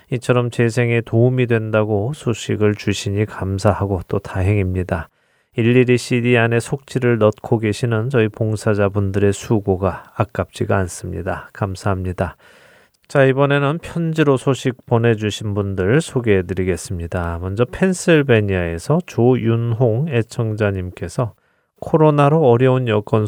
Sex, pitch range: male, 95-125 Hz